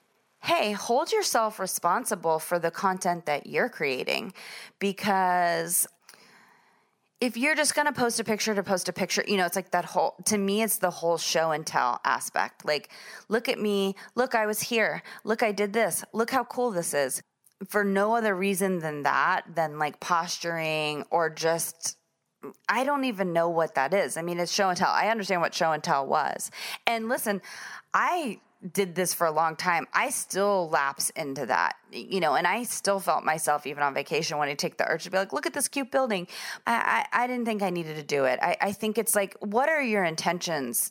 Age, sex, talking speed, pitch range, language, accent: 20-39, female, 210 wpm, 165-220 Hz, English, American